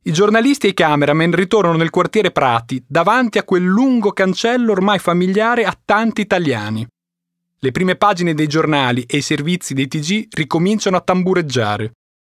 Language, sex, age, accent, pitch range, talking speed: Italian, male, 30-49, native, 125-195 Hz, 155 wpm